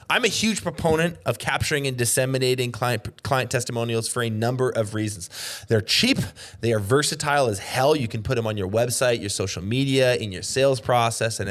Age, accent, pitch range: 20-39, American, 110-135 Hz